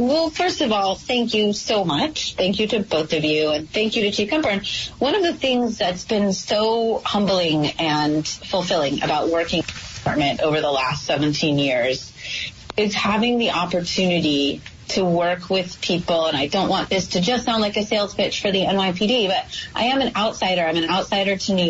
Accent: American